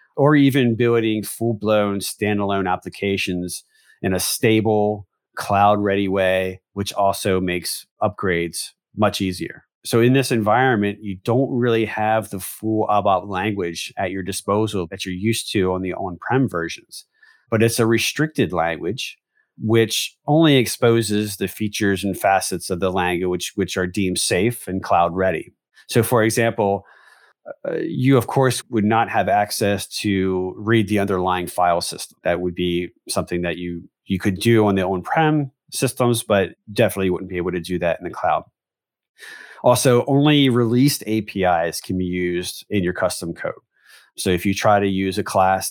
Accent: American